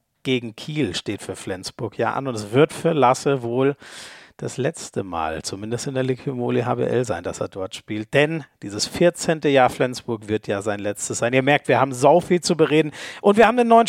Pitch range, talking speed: 125-165 Hz, 210 wpm